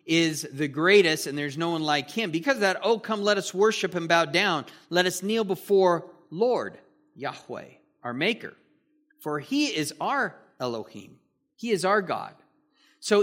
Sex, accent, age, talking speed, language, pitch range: male, American, 40-59, 170 wpm, English, 150-195 Hz